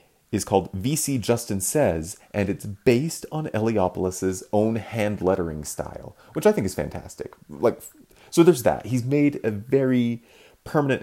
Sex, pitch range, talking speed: male, 90-115 Hz, 150 wpm